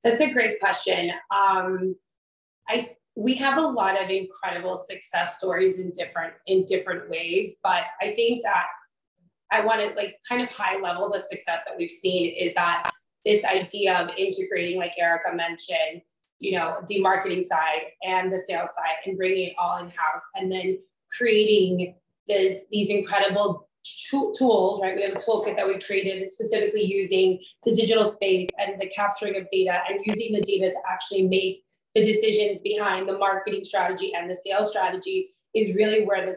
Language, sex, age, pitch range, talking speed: English, female, 20-39, 185-215 Hz, 175 wpm